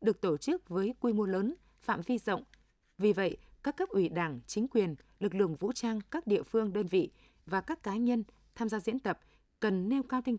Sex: female